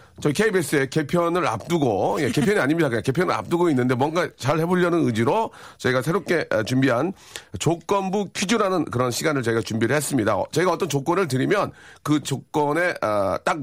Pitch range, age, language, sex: 120-175 Hz, 40-59, Korean, male